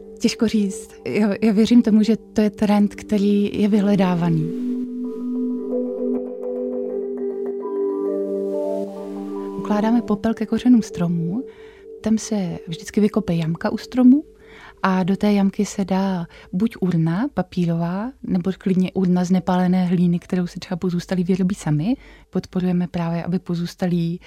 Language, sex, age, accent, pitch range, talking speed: Czech, female, 20-39, native, 175-210 Hz, 125 wpm